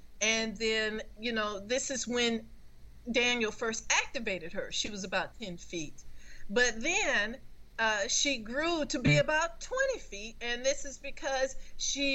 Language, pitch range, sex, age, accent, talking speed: English, 215-280 Hz, female, 40-59, American, 155 wpm